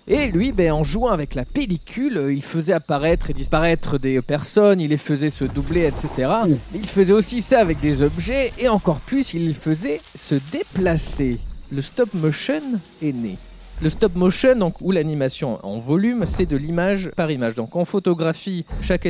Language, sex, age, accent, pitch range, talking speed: French, male, 20-39, French, 135-205 Hz, 175 wpm